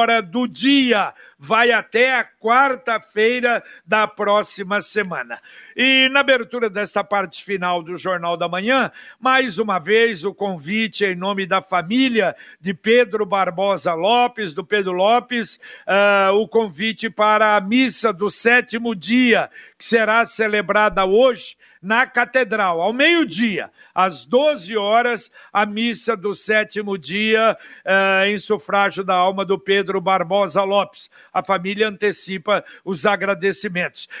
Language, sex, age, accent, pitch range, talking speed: Portuguese, male, 60-79, Brazilian, 195-235 Hz, 130 wpm